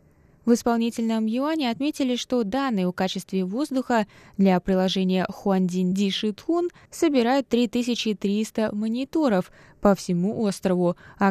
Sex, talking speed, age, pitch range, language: female, 105 wpm, 20-39, 185-240 Hz, Russian